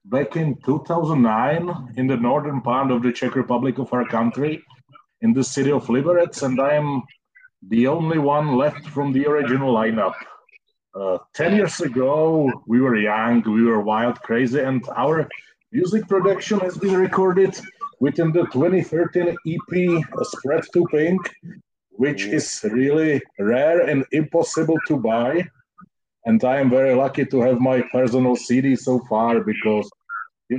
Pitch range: 120-160 Hz